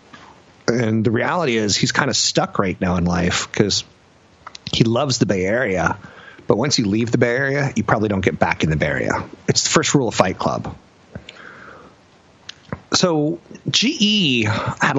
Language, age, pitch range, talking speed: English, 40-59, 110-145 Hz, 175 wpm